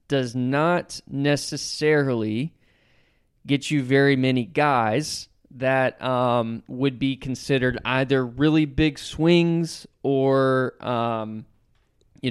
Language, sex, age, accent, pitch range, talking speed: English, male, 20-39, American, 120-145 Hz, 95 wpm